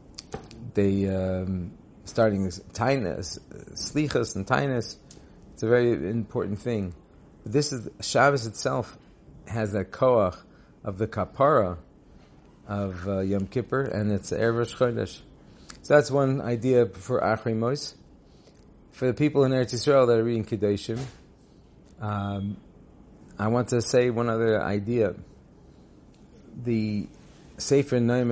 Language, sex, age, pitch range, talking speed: English, male, 40-59, 100-135 Hz, 120 wpm